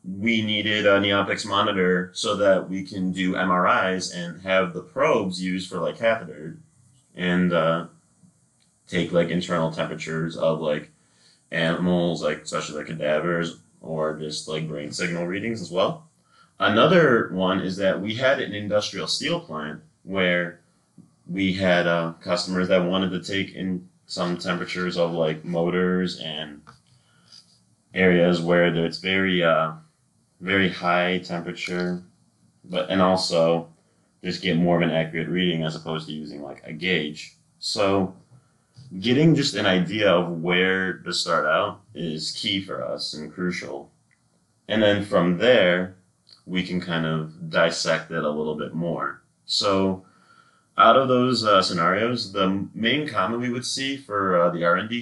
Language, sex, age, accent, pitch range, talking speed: English, male, 30-49, American, 85-100 Hz, 150 wpm